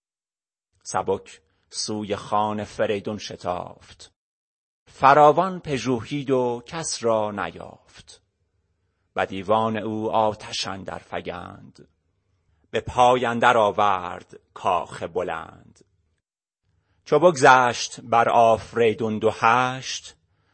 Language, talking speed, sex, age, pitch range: Persian, 80 wpm, male, 30-49, 95-125 Hz